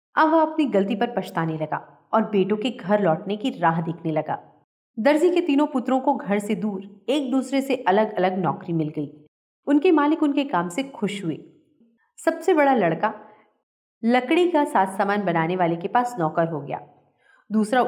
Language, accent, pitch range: Hindi, native, 175-270 Hz